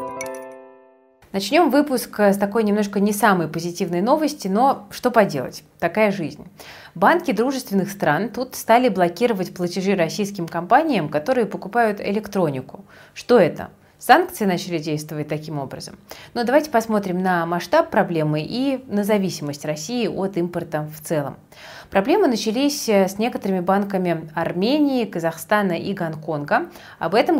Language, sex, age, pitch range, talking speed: Russian, female, 30-49, 170-225 Hz, 125 wpm